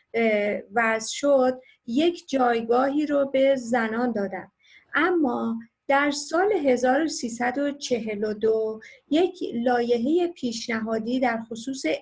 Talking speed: 85 wpm